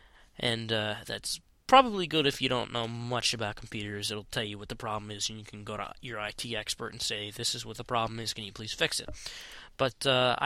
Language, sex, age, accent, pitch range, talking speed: English, male, 20-39, American, 110-140 Hz, 240 wpm